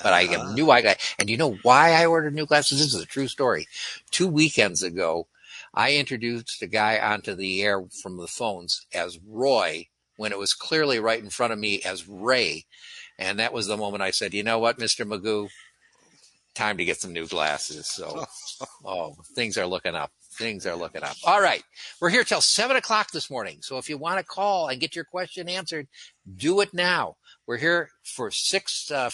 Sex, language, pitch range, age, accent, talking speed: male, English, 115-155 Hz, 60-79, American, 205 wpm